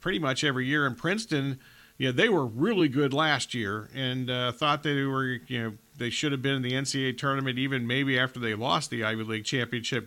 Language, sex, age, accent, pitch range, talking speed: English, male, 40-59, American, 130-155 Hz, 230 wpm